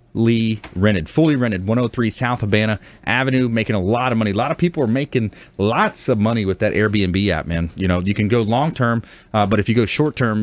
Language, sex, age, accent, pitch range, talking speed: English, male, 30-49, American, 100-120 Hz, 220 wpm